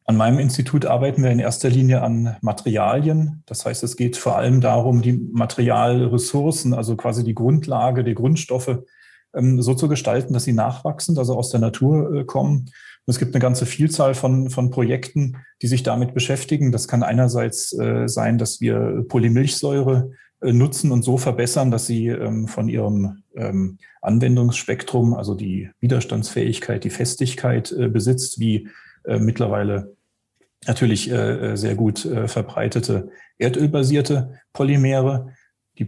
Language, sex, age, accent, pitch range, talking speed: German, male, 40-59, German, 115-130 Hz, 130 wpm